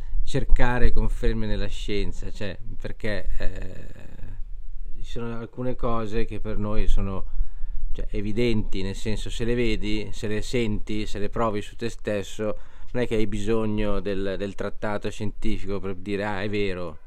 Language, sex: Italian, male